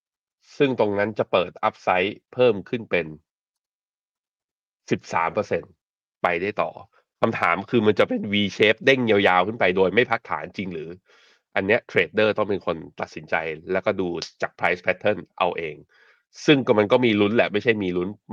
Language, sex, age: Thai, male, 20-39